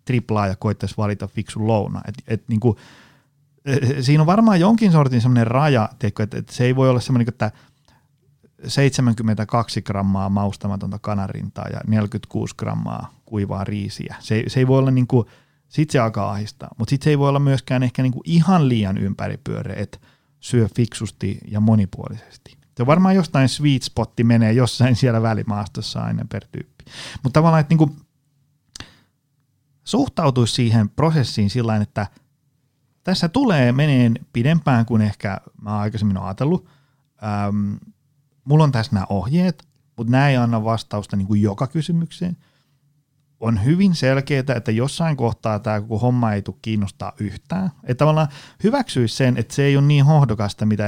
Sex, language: male, Finnish